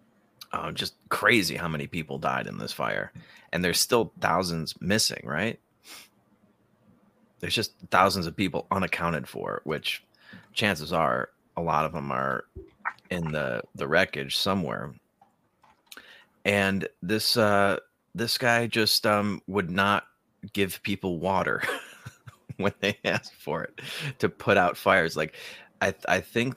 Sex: male